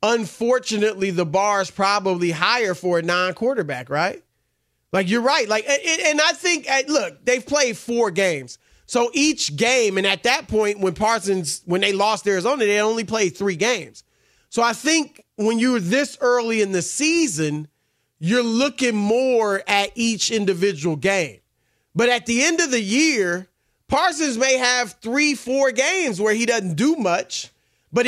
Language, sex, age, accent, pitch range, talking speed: English, male, 30-49, American, 195-255 Hz, 165 wpm